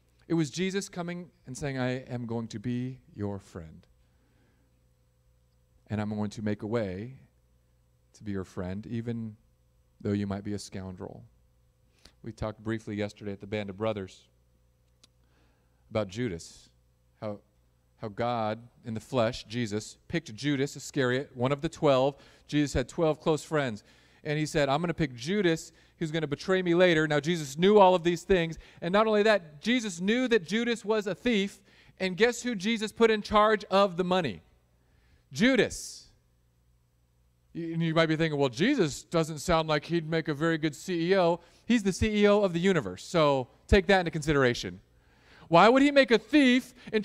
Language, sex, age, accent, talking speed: English, male, 40-59, American, 175 wpm